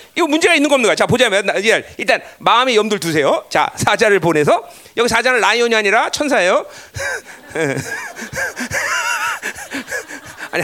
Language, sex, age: Korean, male, 40-59